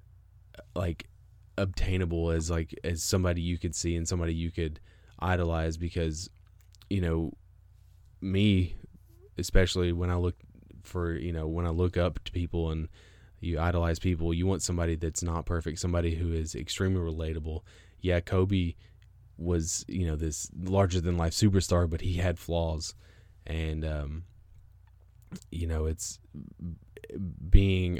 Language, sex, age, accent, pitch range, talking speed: English, male, 20-39, American, 85-95 Hz, 140 wpm